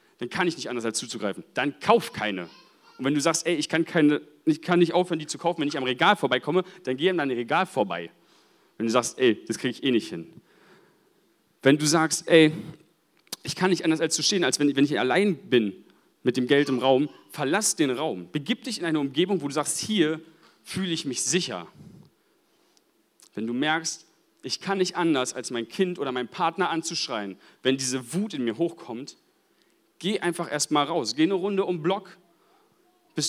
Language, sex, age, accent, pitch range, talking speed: German, male, 40-59, German, 130-175 Hz, 205 wpm